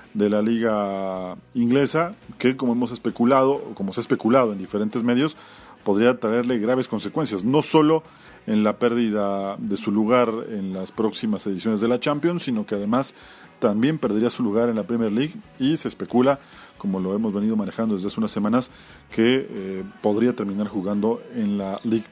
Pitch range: 110-140 Hz